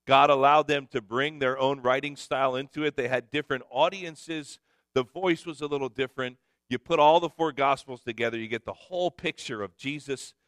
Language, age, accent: English, 40-59, American